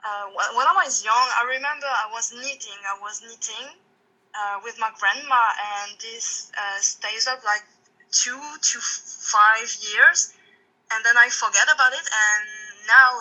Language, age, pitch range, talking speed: English, 20-39, 205-280 Hz, 160 wpm